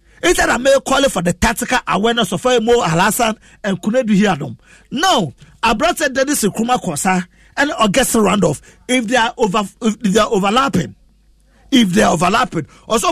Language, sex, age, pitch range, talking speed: English, male, 40-59, 195-270 Hz, 185 wpm